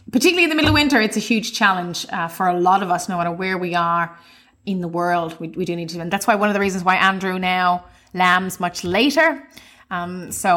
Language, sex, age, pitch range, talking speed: English, female, 20-39, 165-185 Hz, 250 wpm